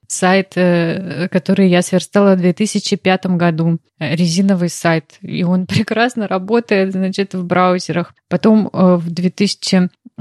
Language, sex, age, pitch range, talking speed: Russian, female, 20-39, 170-195 Hz, 120 wpm